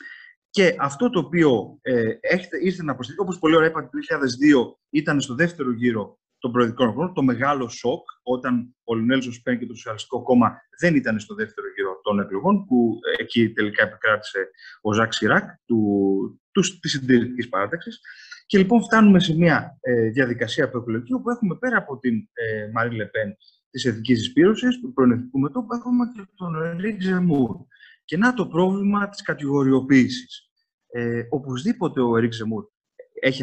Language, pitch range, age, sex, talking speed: Greek, 115-185 Hz, 30-49, male, 165 wpm